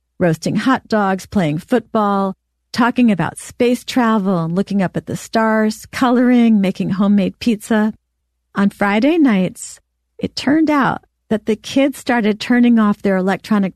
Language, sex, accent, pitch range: English, female, American, 170-235 Hz